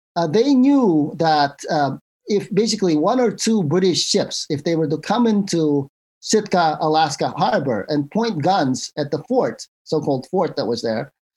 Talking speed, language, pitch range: 170 wpm, English, 150-200 Hz